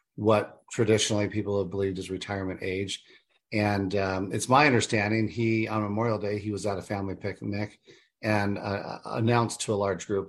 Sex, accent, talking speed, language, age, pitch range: male, American, 175 wpm, English, 40-59, 95-110 Hz